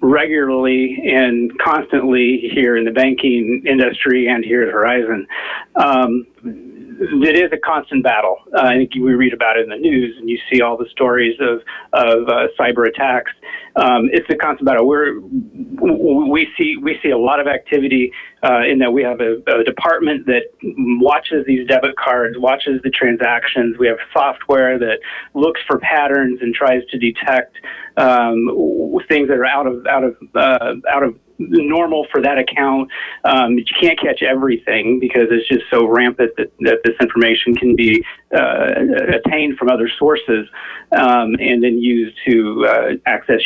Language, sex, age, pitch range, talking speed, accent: English, male, 40-59, 120-150 Hz, 170 wpm, American